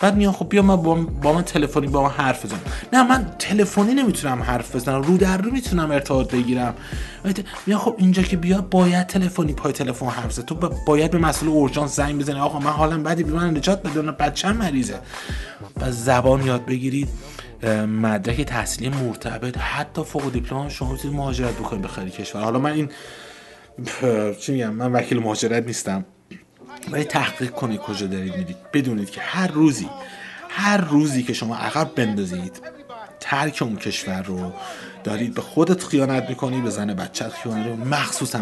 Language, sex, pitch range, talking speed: Persian, male, 110-150 Hz, 170 wpm